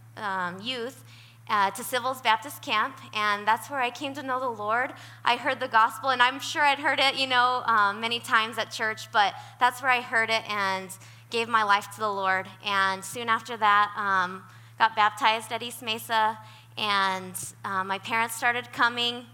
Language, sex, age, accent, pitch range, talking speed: English, female, 20-39, American, 195-230 Hz, 190 wpm